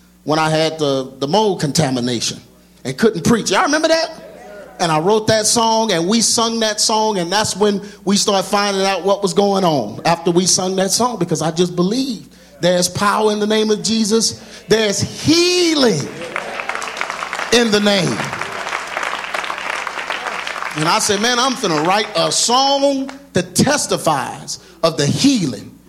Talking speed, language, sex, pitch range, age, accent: 160 wpm, English, male, 175-235 Hz, 40-59, American